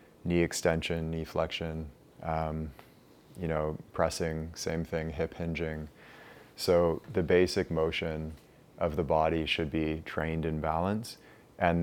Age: 20-39